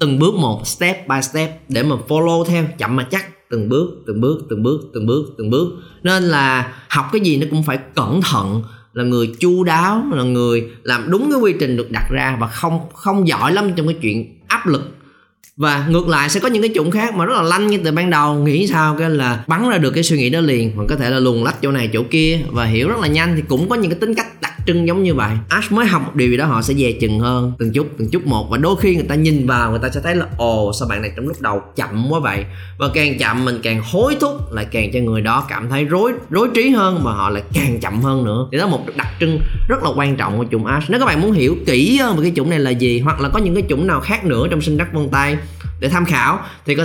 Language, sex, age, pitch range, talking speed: Vietnamese, male, 20-39, 115-165 Hz, 285 wpm